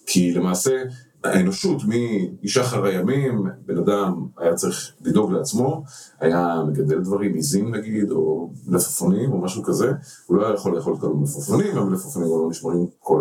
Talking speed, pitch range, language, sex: 145 wpm, 85-120 Hz, English, male